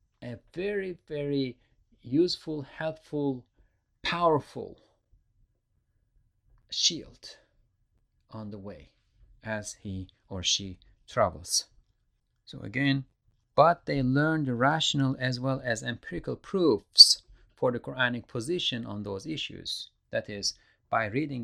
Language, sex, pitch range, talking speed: English, male, 100-135 Hz, 105 wpm